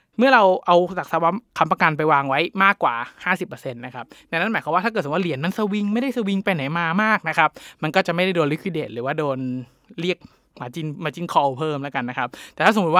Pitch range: 140-185 Hz